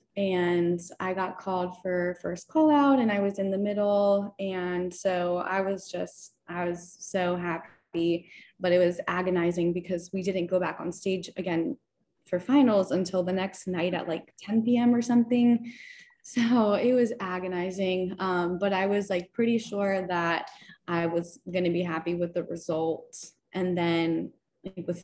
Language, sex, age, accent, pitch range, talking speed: English, female, 20-39, American, 175-200 Hz, 170 wpm